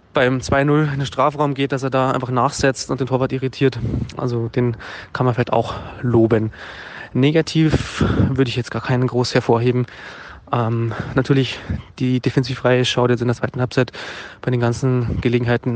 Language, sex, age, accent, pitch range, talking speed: German, male, 20-39, German, 120-135 Hz, 170 wpm